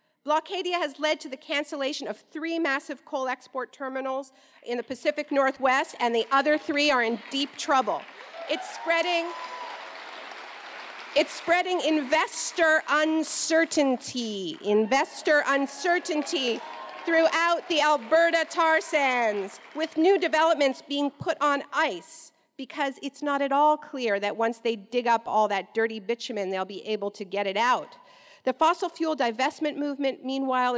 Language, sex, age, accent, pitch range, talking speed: English, female, 50-69, American, 245-315 Hz, 140 wpm